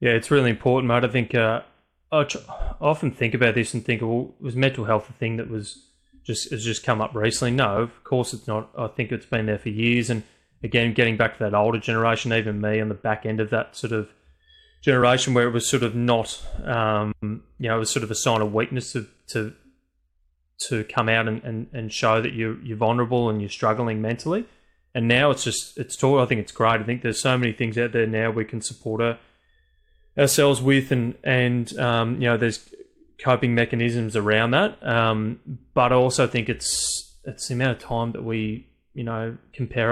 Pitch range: 110-125 Hz